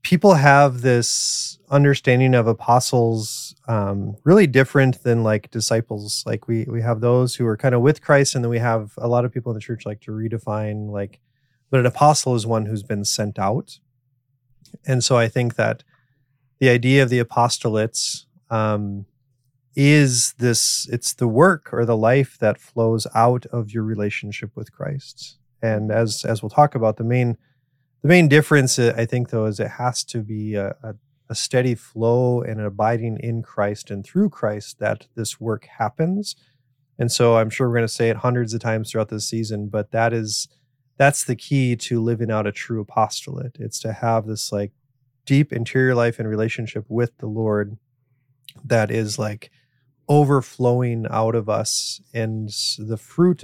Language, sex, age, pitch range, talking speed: English, male, 30-49, 110-130 Hz, 175 wpm